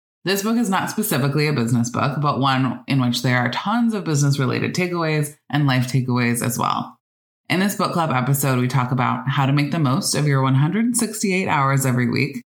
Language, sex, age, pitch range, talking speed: English, female, 20-39, 130-185 Hz, 205 wpm